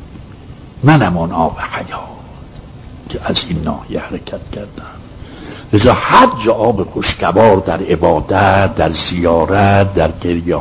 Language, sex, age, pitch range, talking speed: Persian, male, 60-79, 90-120 Hz, 115 wpm